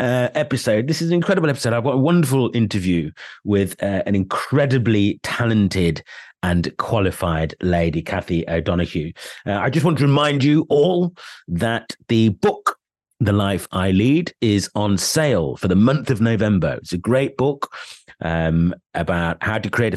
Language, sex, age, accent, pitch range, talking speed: English, male, 30-49, British, 95-130 Hz, 160 wpm